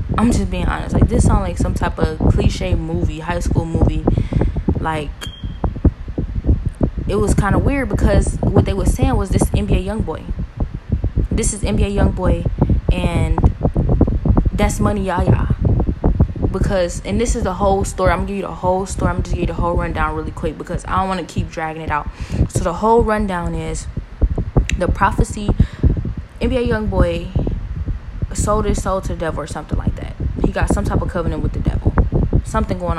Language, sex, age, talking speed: English, female, 10-29, 195 wpm